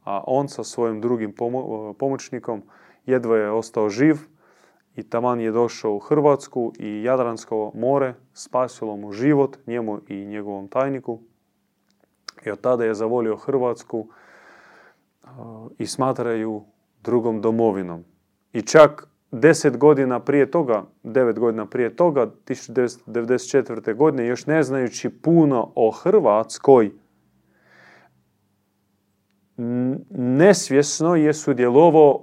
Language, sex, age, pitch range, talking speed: Croatian, male, 30-49, 105-135 Hz, 110 wpm